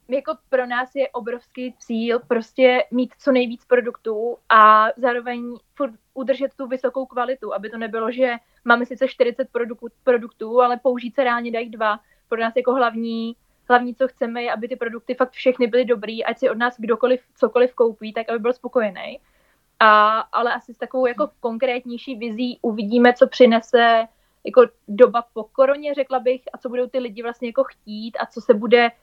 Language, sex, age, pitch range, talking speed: Slovak, female, 20-39, 230-260 Hz, 175 wpm